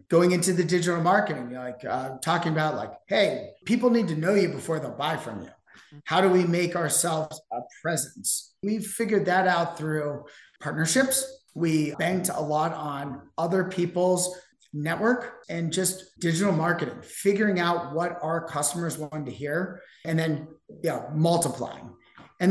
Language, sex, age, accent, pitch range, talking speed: English, male, 30-49, American, 155-195 Hz, 155 wpm